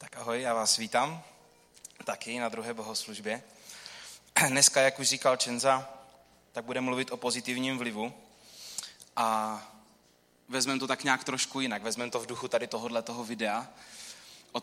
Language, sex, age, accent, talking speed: Czech, male, 20-39, native, 150 wpm